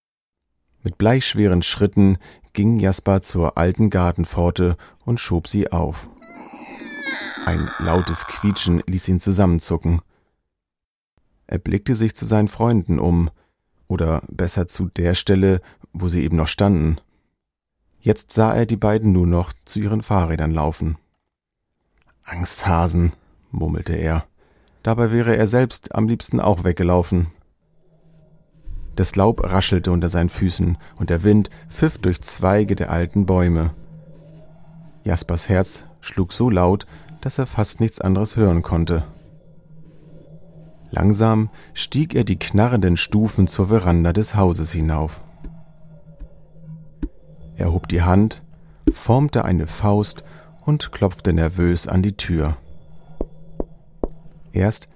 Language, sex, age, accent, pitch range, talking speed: German, male, 40-59, German, 85-115 Hz, 120 wpm